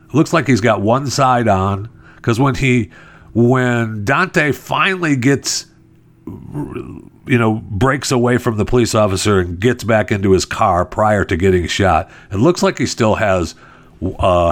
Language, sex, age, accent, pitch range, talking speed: English, male, 50-69, American, 95-130 Hz, 160 wpm